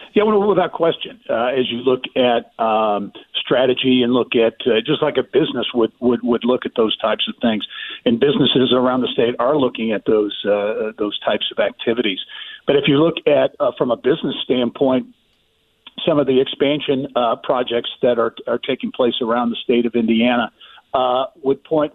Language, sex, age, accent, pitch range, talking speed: English, male, 50-69, American, 125-165 Hz, 195 wpm